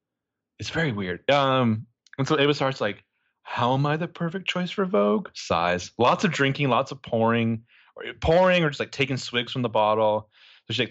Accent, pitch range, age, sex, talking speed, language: American, 110-150 Hz, 30-49, male, 195 wpm, English